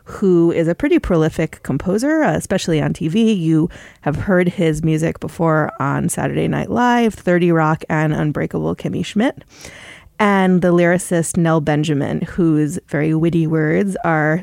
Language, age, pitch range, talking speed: English, 30-49, 160-210 Hz, 145 wpm